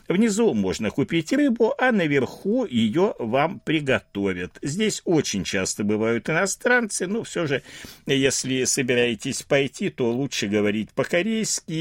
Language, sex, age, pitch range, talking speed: Russian, male, 60-79, 110-175 Hz, 120 wpm